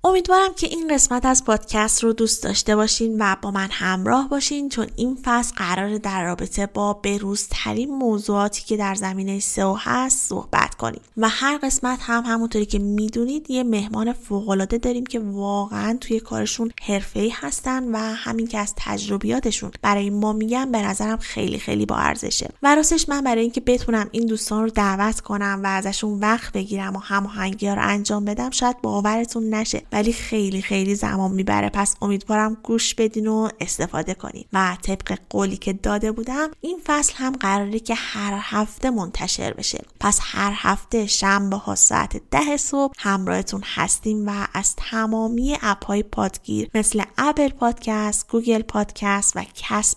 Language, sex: Persian, female